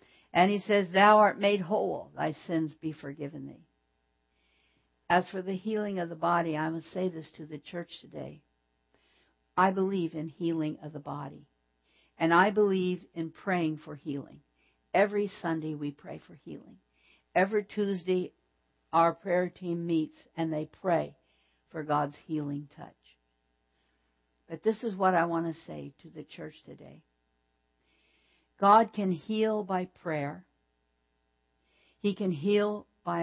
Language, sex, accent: English, female, American